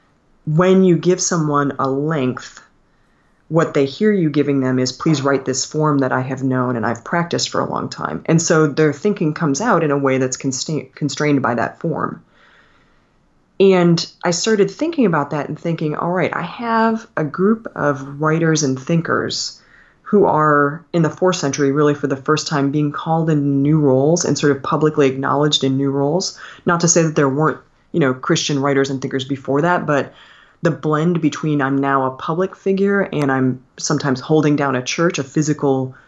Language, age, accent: English, 20-39, American